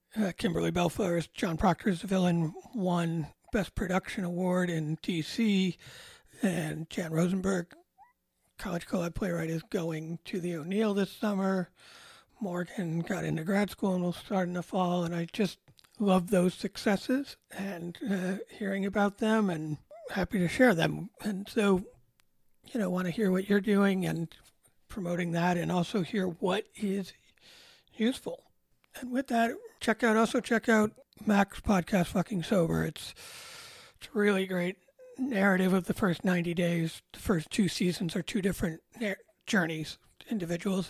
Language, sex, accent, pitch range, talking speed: English, male, American, 175-215 Hz, 150 wpm